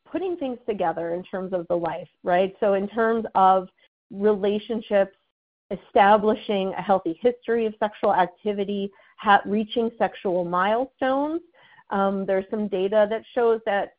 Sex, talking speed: female, 135 wpm